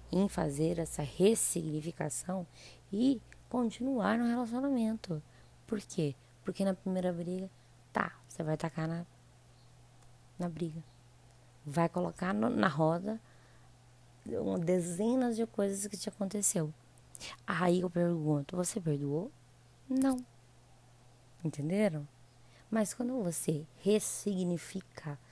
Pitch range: 130-180 Hz